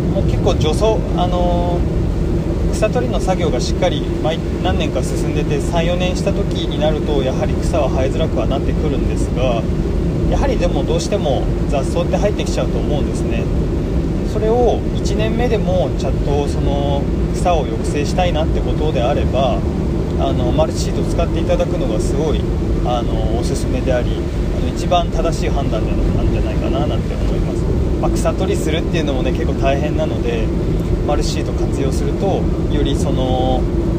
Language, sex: Japanese, male